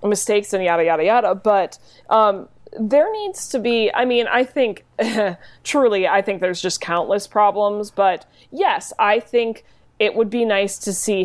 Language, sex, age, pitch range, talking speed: English, female, 20-39, 195-255 Hz, 170 wpm